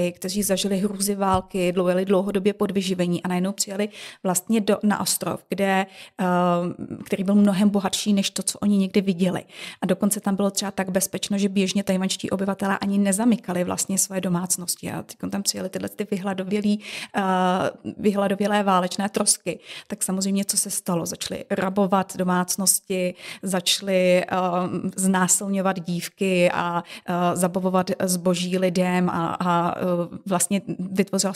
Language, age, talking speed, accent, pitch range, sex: Czech, 30-49, 130 wpm, native, 180-200 Hz, female